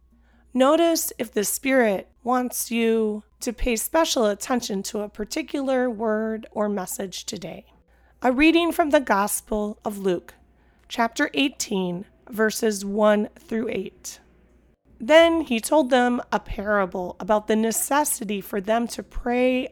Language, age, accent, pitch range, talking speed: English, 30-49, American, 200-265 Hz, 130 wpm